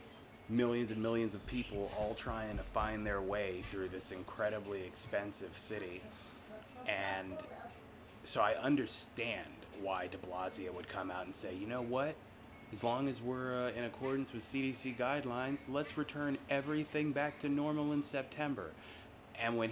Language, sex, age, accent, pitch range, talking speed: English, male, 30-49, American, 100-125 Hz, 155 wpm